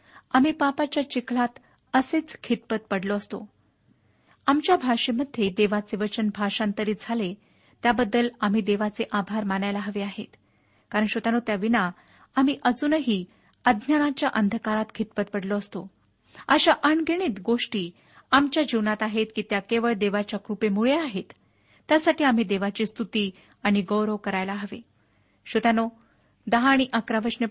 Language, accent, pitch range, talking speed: Marathi, native, 205-260 Hz, 115 wpm